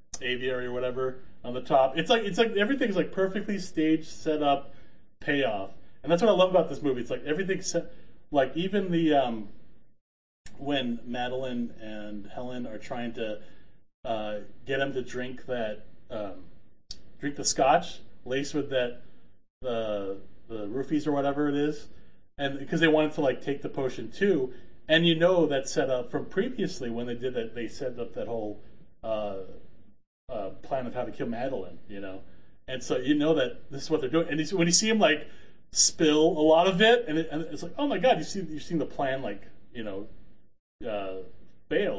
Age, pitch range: 30-49, 125-170 Hz